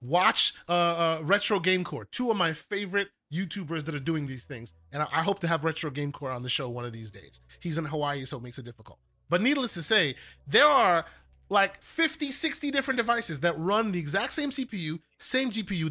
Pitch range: 155-220 Hz